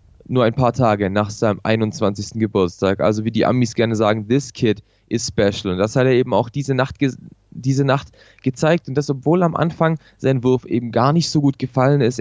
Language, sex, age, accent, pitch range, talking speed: German, male, 20-39, German, 110-140 Hz, 215 wpm